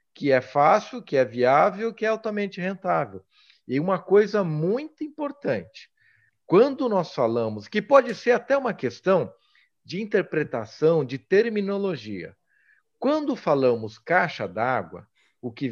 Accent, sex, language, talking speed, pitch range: Brazilian, male, Portuguese, 130 wpm, 125-200 Hz